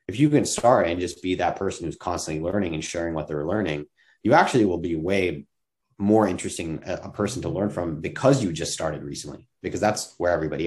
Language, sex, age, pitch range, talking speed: English, male, 30-49, 80-105 Hz, 215 wpm